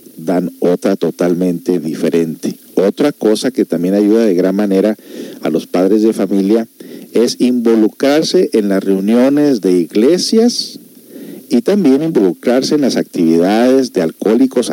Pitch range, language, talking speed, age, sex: 95-125 Hz, Spanish, 130 wpm, 50-69, male